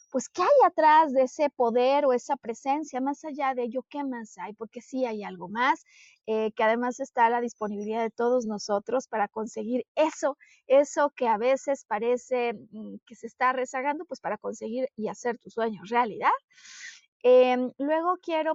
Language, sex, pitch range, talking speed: Spanish, female, 230-290 Hz, 180 wpm